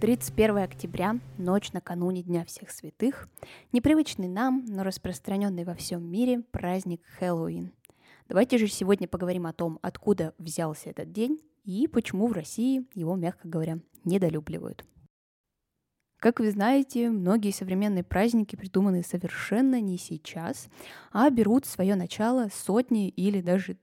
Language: Russian